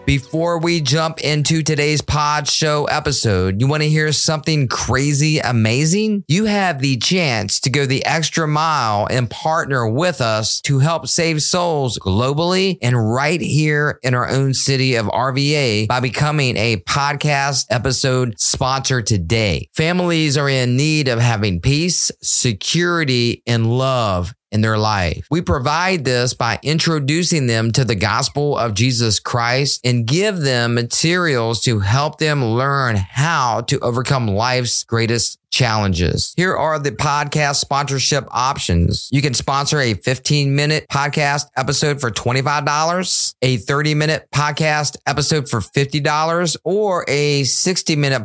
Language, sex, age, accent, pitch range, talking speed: English, male, 30-49, American, 120-150 Hz, 140 wpm